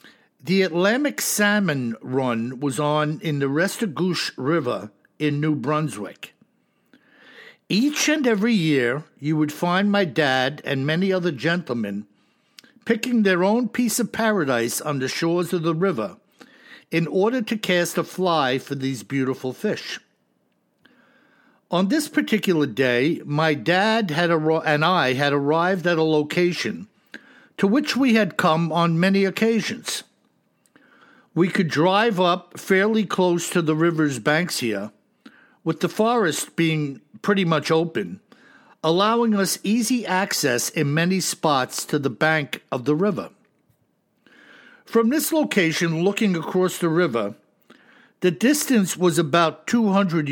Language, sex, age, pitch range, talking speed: English, male, 60-79, 150-210 Hz, 135 wpm